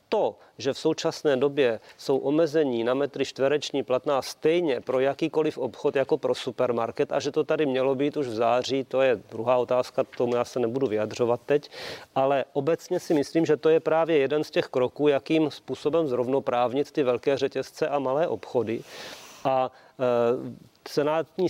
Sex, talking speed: male, 170 wpm